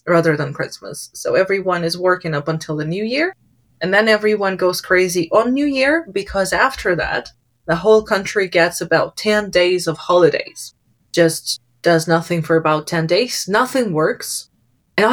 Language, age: English, 20-39